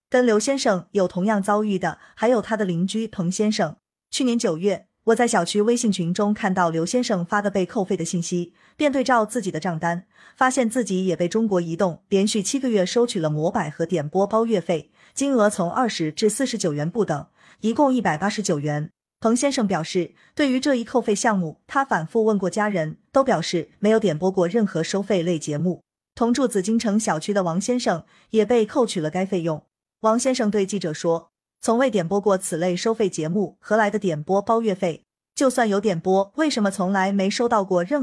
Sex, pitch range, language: female, 180-230 Hz, Chinese